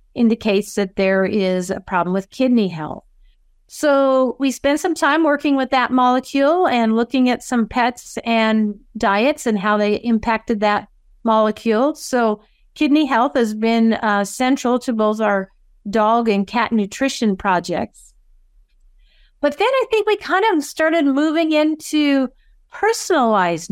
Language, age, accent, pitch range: English, 50-69, American, 200-255 Hz